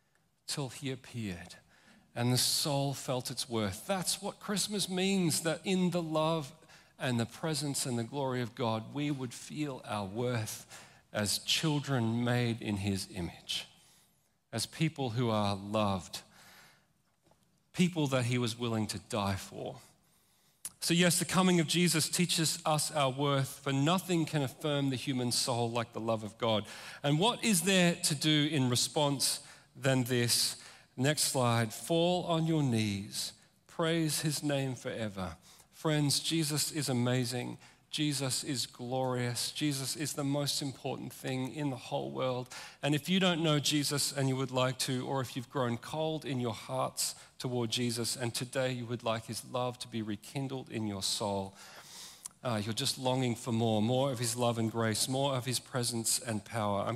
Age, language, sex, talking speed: 40-59, English, male, 170 wpm